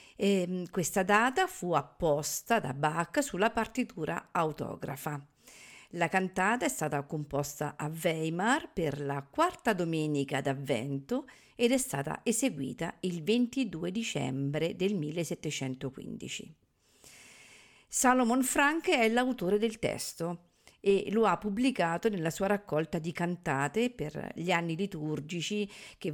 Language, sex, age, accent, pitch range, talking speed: Italian, female, 50-69, native, 155-225 Hz, 115 wpm